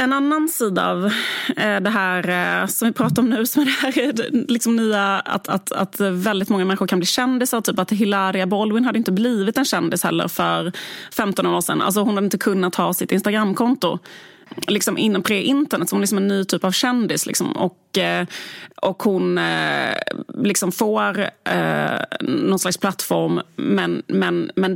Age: 30-49